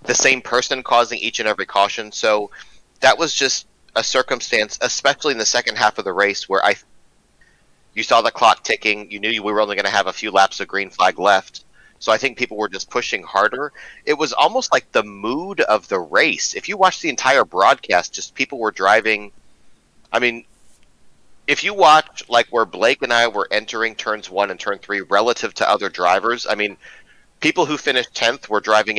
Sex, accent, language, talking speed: male, American, English, 210 wpm